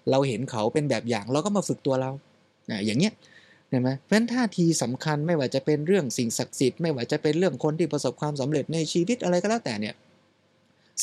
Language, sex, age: Thai, male, 20-39